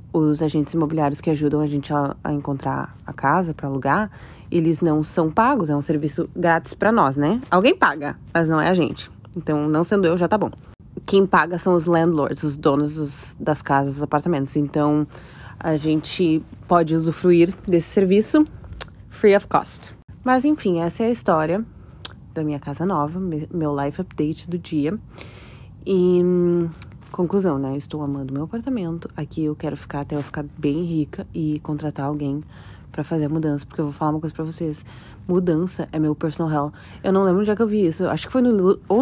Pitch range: 150-185 Hz